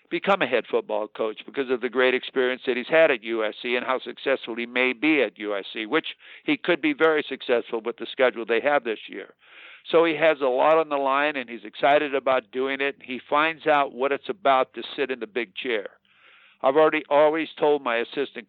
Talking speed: 220 wpm